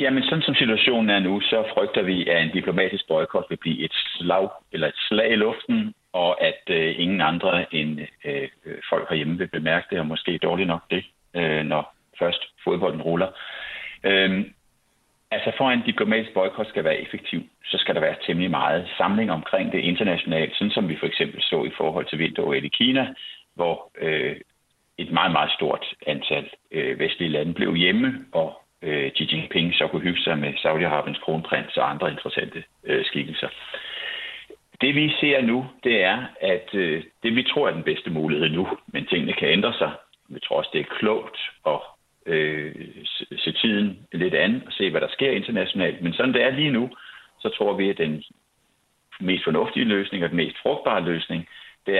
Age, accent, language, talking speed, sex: 60-79, native, Danish, 190 wpm, male